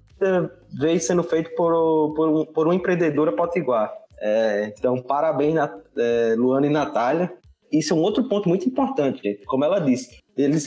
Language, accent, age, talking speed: Portuguese, Brazilian, 20-39, 155 wpm